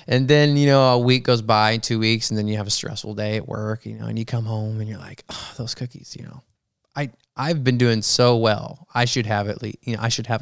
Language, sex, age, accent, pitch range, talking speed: English, male, 20-39, American, 105-125 Hz, 280 wpm